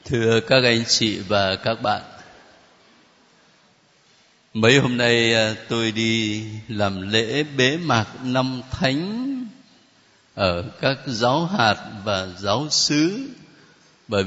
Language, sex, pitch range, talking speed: Vietnamese, male, 105-145 Hz, 110 wpm